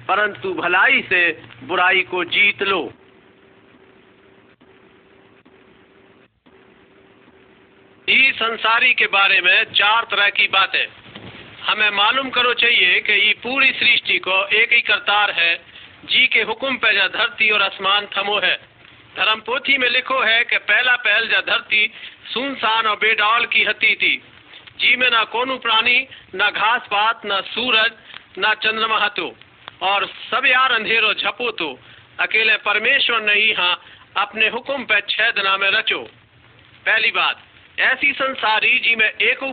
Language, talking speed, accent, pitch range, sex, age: Hindi, 135 wpm, native, 200-250 Hz, male, 50-69